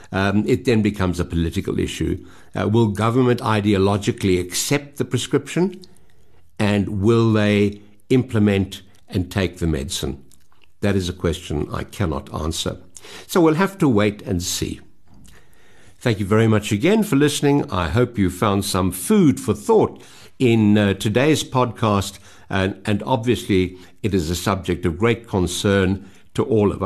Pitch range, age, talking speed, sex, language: 90-120 Hz, 60-79, 150 wpm, male, English